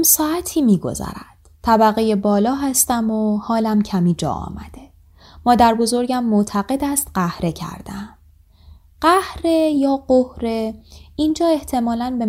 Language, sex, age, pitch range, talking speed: Persian, female, 20-39, 180-265 Hz, 110 wpm